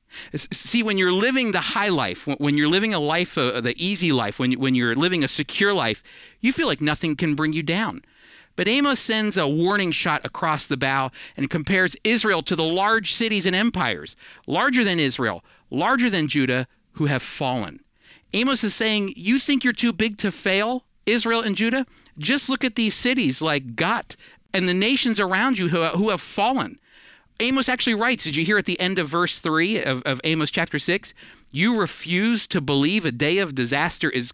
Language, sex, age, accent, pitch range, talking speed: English, male, 50-69, American, 140-225 Hz, 200 wpm